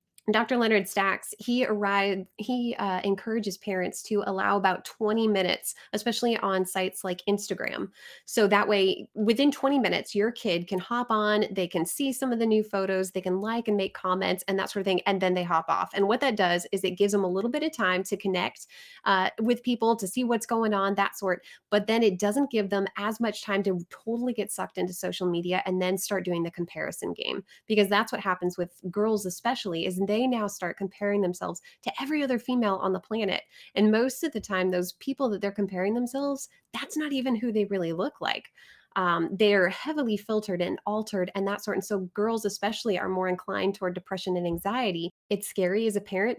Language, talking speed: English, 215 wpm